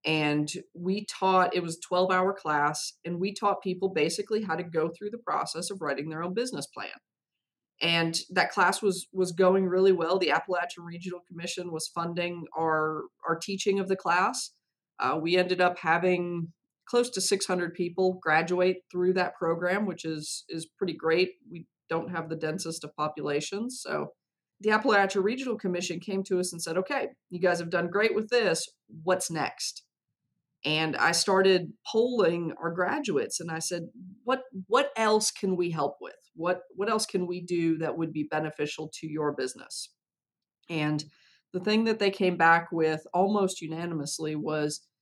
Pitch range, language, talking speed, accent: 160-190 Hz, English, 175 wpm, American